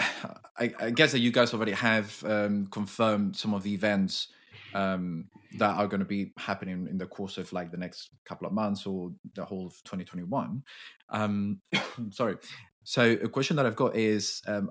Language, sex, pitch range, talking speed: English, male, 100-115 Hz, 185 wpm